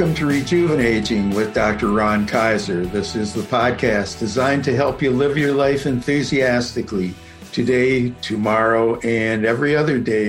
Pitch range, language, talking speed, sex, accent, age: 115-140 Hz, English, 145 wpm, male, American, 60-79